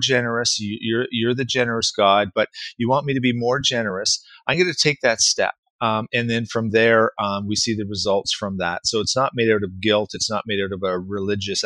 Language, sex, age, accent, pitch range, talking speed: English, male, 30-49, American, 100-125 Hz, 235 wpm